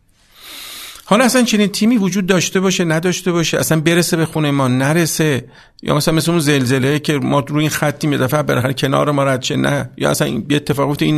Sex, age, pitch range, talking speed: male, 50-69, 125-170 Hz, 200 wpm